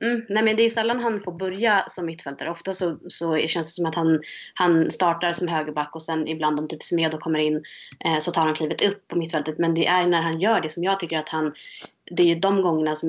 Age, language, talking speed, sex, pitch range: 20-39, Swedish, 270 wpm, female, 155-180 Hz